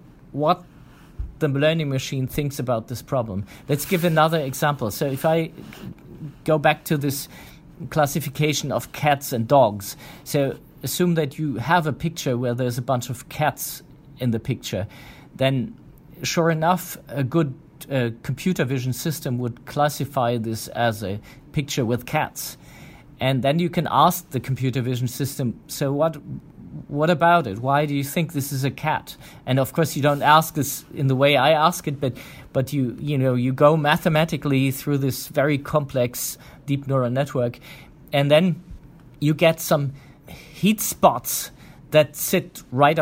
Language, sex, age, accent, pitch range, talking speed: English, male, 40-59, German, 130-155 Hz, 165 wpm